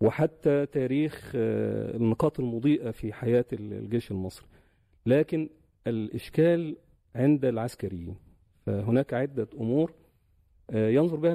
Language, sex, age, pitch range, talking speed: Arabic, male, 40-59, 105-140 Hz, 90 wpm